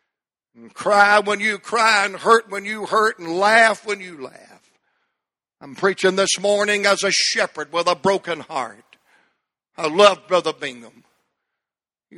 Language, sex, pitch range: English, male, 185-220 Hz